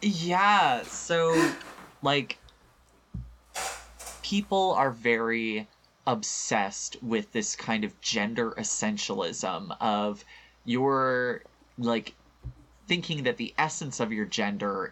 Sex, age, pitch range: male, 20-39, 105-135 Hz